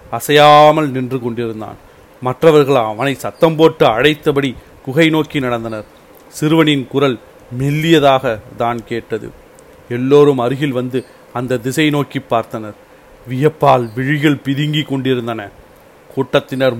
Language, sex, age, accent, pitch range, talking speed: Tamil, male, 40-59, native, 125-150 Hz, 100 wpm